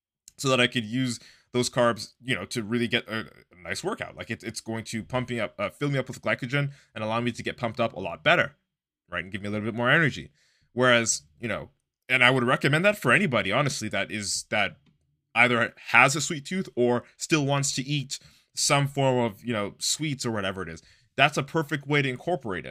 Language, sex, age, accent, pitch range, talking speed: English, male, 20-39, American, 115-145 Hz, 235 wpm